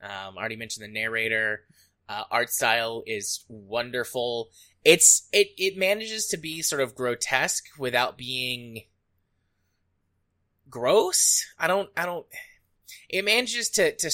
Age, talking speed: 20-39, 130 wpm